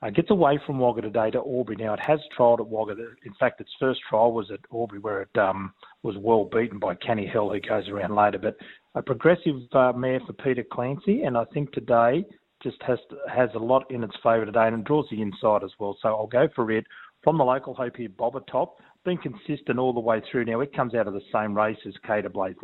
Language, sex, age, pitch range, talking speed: English, male, 30-49, 110-130 Hz, 240 wpm